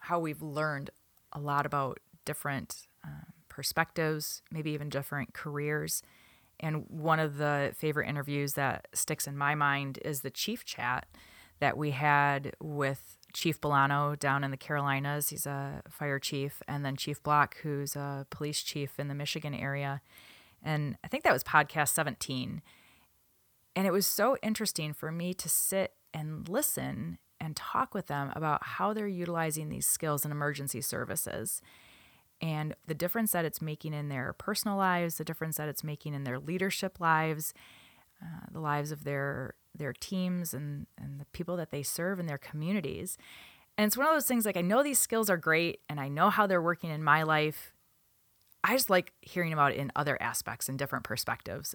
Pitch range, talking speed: 140-170 Hz, 180 wpm